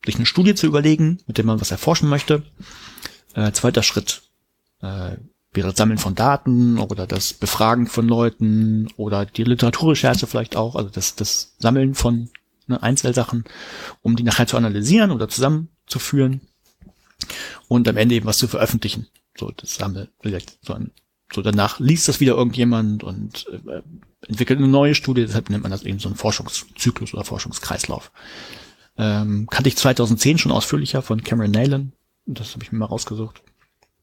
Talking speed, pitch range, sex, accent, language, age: 160 wpm, 110-130 Hz, male, German, German, 40-59